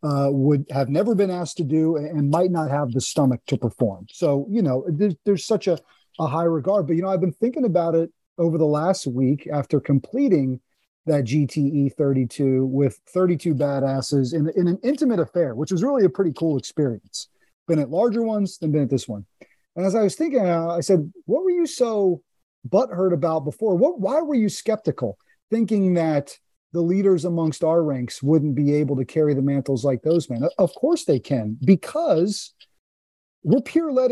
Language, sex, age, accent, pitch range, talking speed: English, male, 40-59, American, 140-200 Hz, 195 wpm